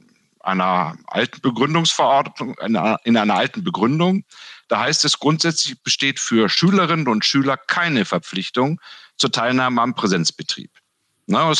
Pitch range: 120-170 Hz